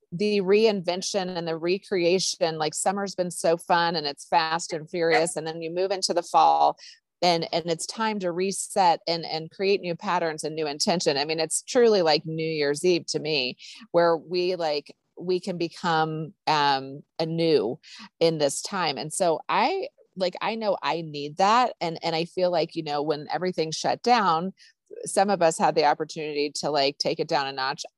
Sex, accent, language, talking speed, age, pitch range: female, American, English, 195 wpm, 30-49, 155-190 Hz